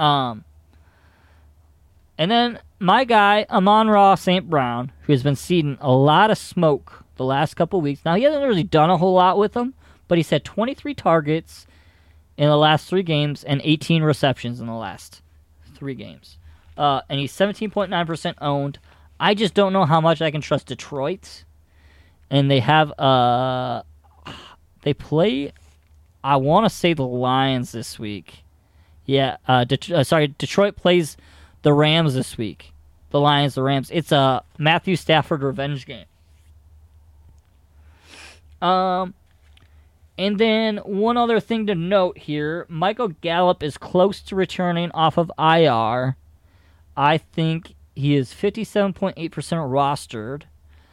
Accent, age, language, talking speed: American, 20-39, English, 145 wpm